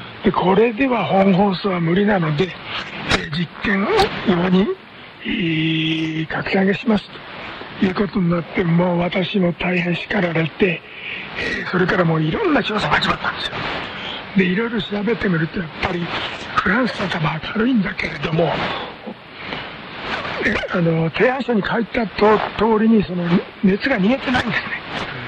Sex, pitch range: male, 180-215 Hz